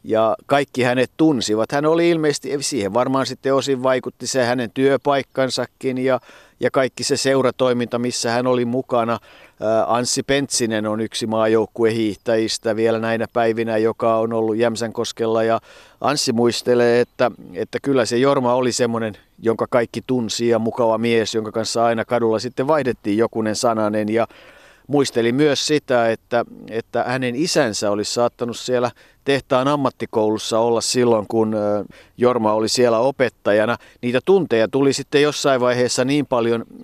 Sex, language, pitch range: male, Finnish, 115-130 Hz